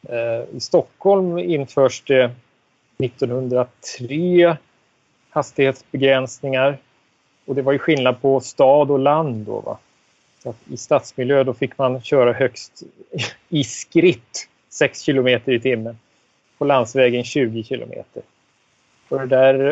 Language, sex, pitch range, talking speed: Swedish, male, 125-145 Hz, 115 wpm